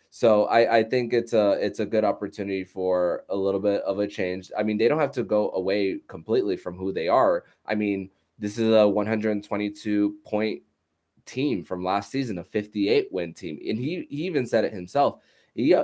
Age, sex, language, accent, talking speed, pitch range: 20-39, male, English, American, 200 wpm, 105-130 Hz